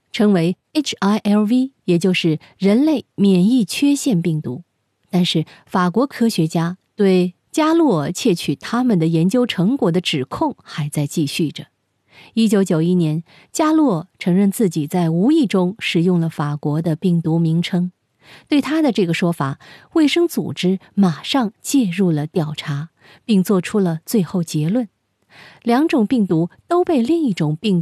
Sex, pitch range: female, 165-220 Hz